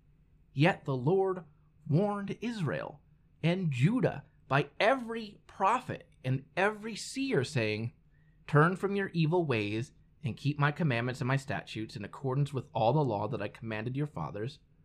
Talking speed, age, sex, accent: 150 wpm, 30-49, male, American